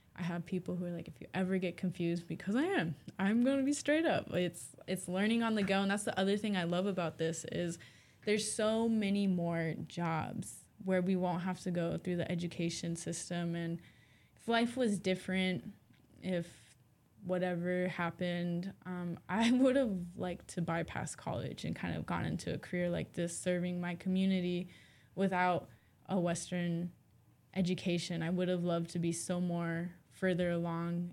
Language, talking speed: English, 180 wpm